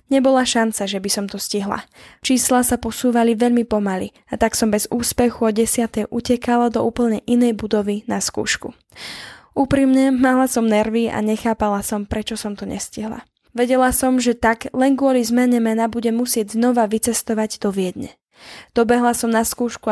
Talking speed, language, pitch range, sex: 165 wpm, Slovak, 220-250 Hz, female